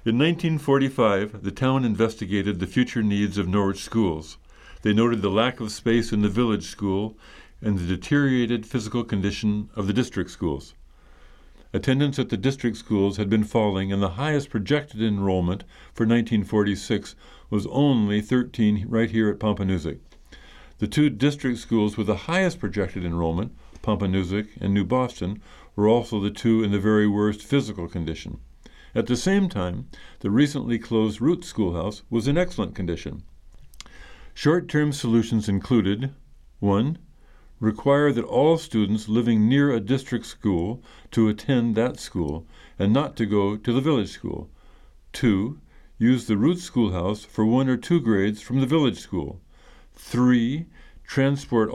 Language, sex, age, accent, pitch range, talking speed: English, male, 50-69, American, 100-125 Hz, 150 wpm